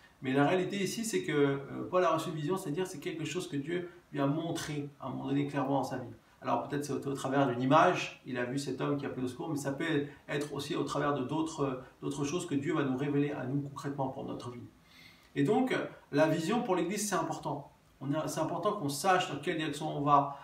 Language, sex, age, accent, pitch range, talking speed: French, male, 40-59, French, 140-175 Hz, 260 wpm